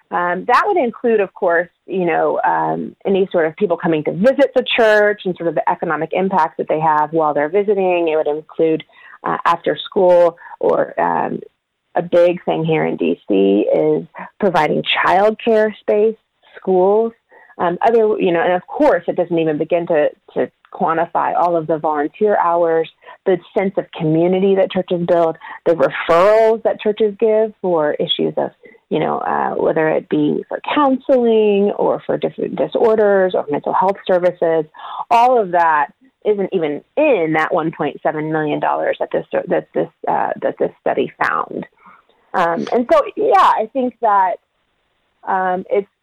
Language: English